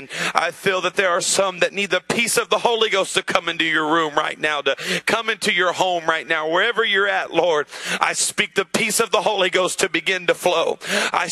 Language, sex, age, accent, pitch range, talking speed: English, male, 40-59, American, 185-220 Hz, 240 wpm